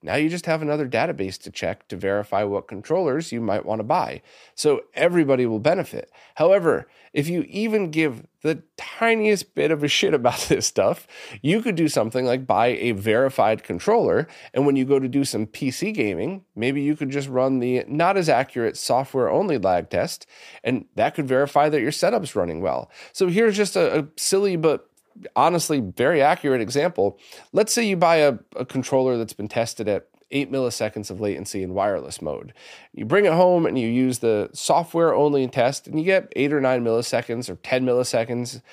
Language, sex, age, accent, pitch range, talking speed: English, male, 30-49, American, 125-165 Hz, 195 wpm